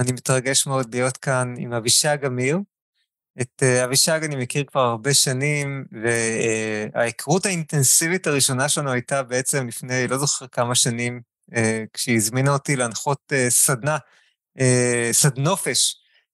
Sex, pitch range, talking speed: male, 125-150 Hz, 120 wpm